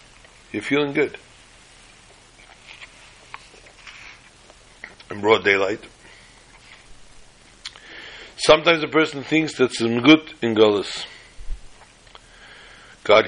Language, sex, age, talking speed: English, male, 60-79, 70 wpm